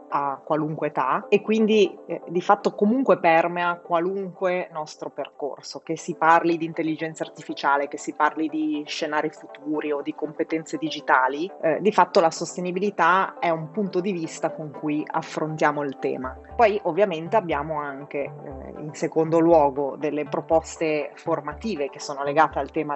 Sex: female